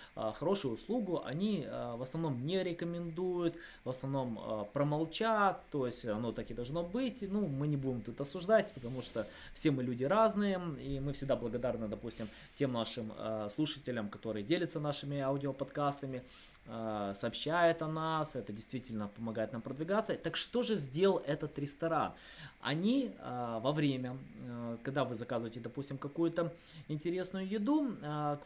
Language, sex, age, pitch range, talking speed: Russian, male, 20-39, 120-170 Hz, 140 wpm